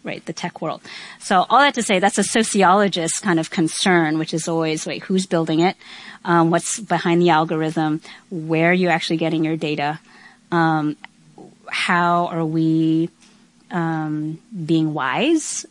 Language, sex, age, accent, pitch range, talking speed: English, female, 30-49, American, 165-210 Hz, 155 wpm